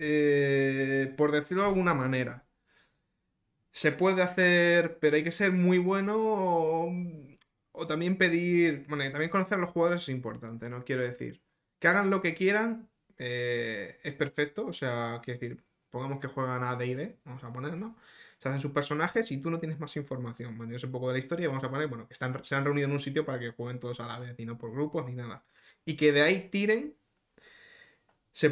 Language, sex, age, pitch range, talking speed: Spanish, male, 20-39, 130-170 Hz, 210 wpm